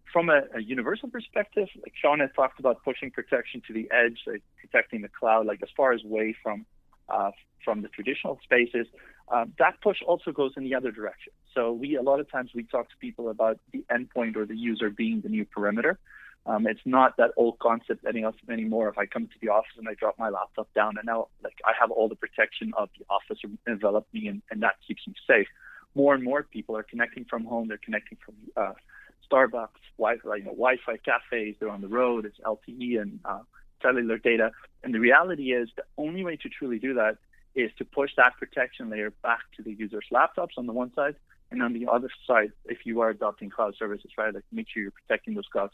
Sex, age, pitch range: male, 30-49, 110-135 Hz